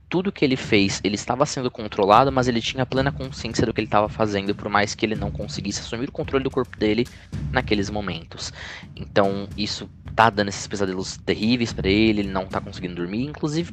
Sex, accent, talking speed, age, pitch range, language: male, Brazilian, 205 wpm, 20-39, 90-120 Hz, Portuguese